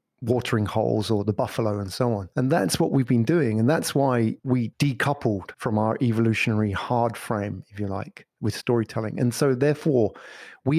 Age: 30-49